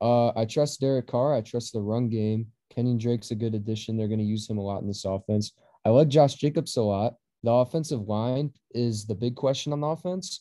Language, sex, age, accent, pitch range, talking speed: English, male, 20-39, American, 105-130 Hz, 235 wpm